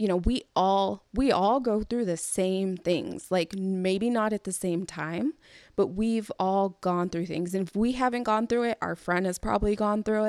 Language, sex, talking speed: English, female, 215 wpm